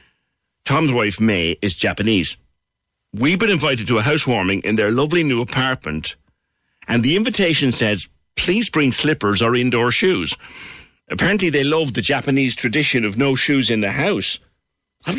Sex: male